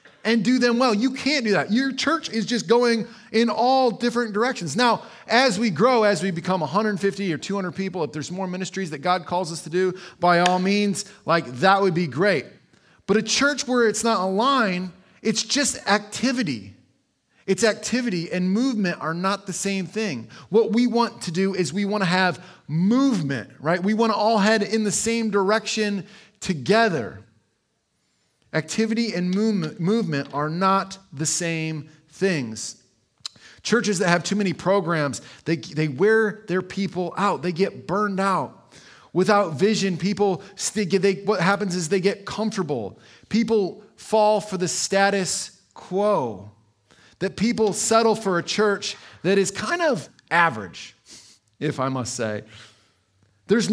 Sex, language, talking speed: male, English, 165 wpm